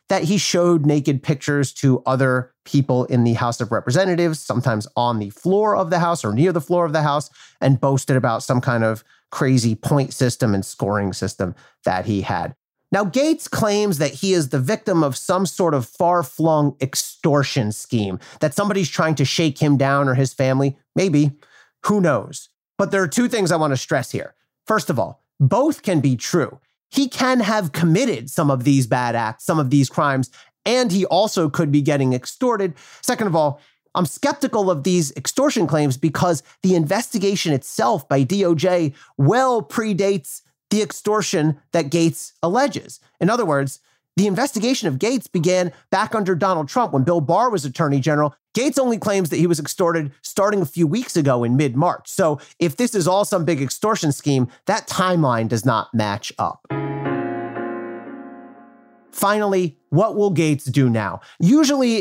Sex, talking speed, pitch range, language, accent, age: male, 175 wpm, 130-190 Hz, English, American, 30-49